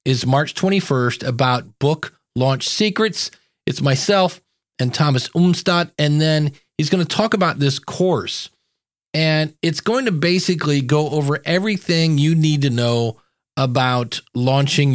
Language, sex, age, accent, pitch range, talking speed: English, male, 40-59, American, 135-175 Hz, 140 wpm